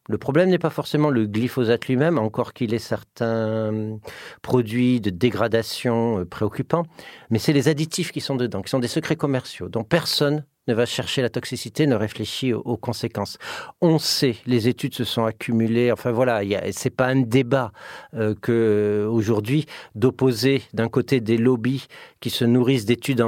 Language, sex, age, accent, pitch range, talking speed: French, male, 50-69, French, 115-145 Hz, 165 wpm